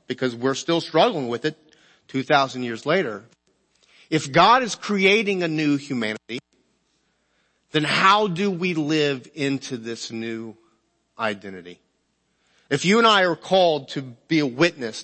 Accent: American